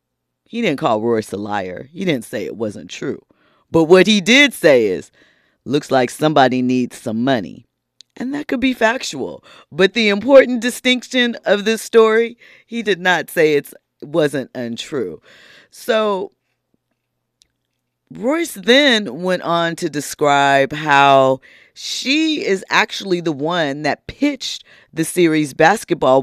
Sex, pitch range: female, 135-185 Hz